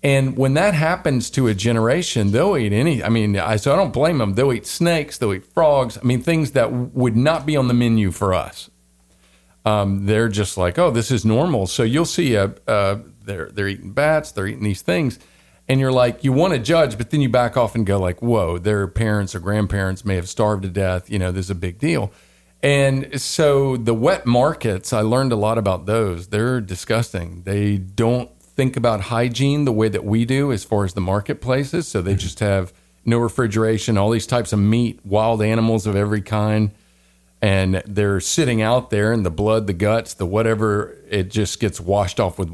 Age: 40-59